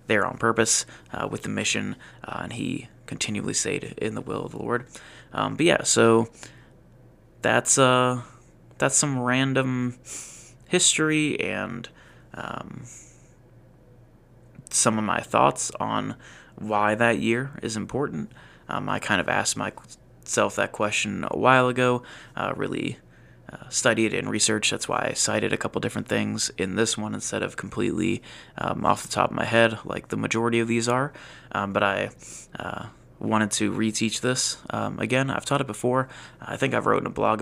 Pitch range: 110-130 Hz